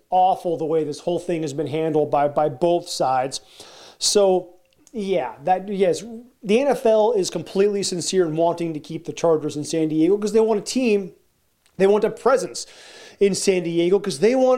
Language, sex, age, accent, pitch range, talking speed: English, male, 30-49, American, 175-220 Hz, 190 wpm